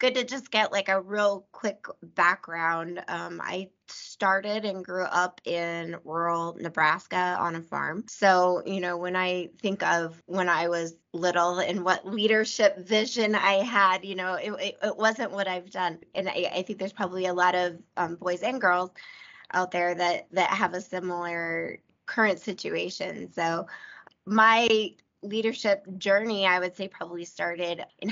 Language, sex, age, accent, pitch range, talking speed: English, female, 20-39, American, 175-200 Hz, 170 wpm